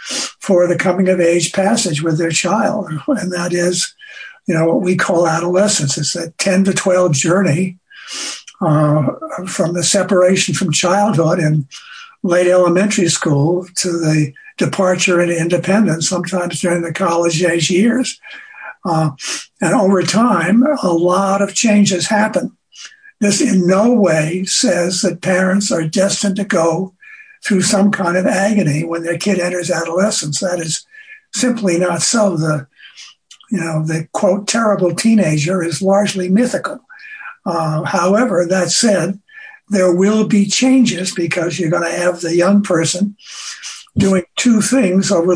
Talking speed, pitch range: 140 wpm, 170-205 Hz